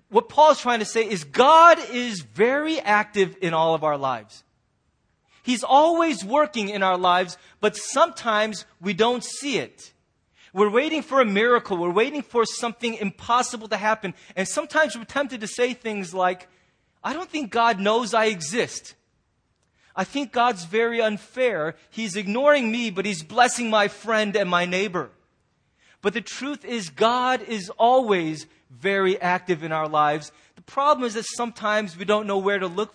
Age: 30-49